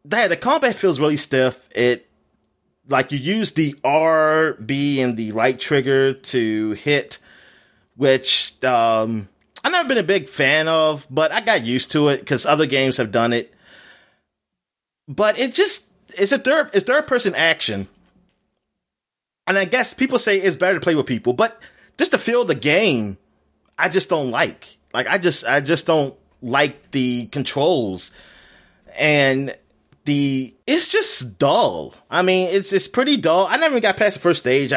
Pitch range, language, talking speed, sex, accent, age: 125-185 Hz, English, 165 wpm, male, American, 30-49